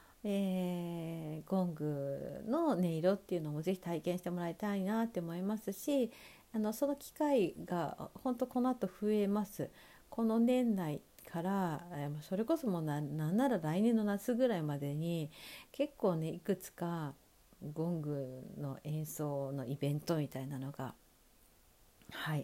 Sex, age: female, 50-69